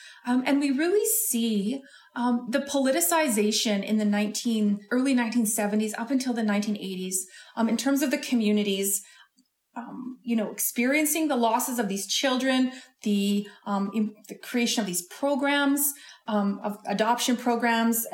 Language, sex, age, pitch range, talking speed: English, female, 30-49, 205-250 Hz, 145 wpm